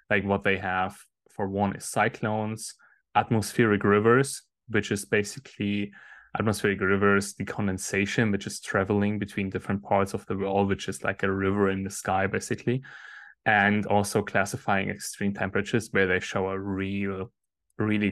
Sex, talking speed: male, 150 wpm